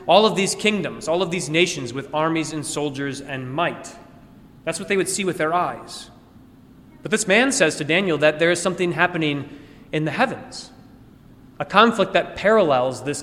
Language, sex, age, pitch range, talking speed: English, male, 30-49, 150-190 Hz, 185 wpm